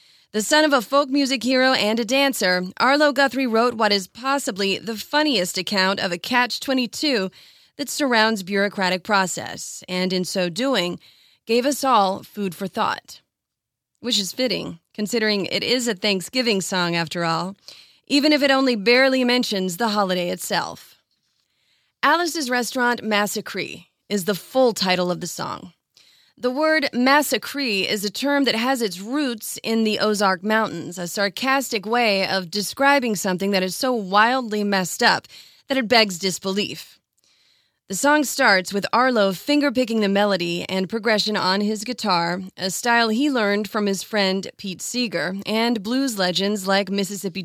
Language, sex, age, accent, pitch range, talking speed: English, female, 30-49, American, 190-250 Hz, 155 wpm